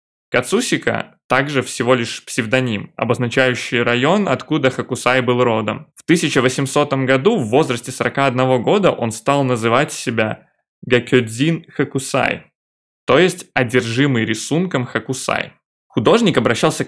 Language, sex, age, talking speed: Russian, male, 20-39, 110 wpm